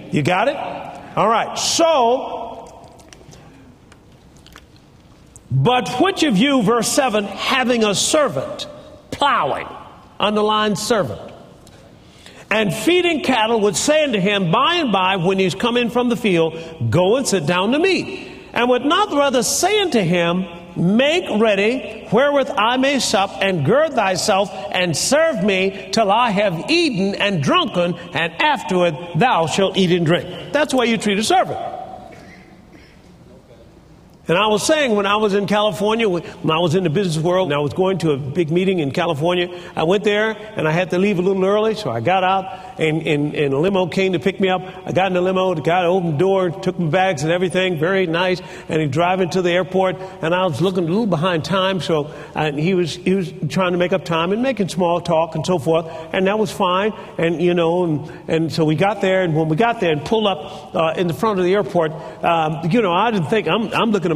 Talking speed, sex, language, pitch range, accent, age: 200 wpm, male, English, 175-215 Hz, American, 50-69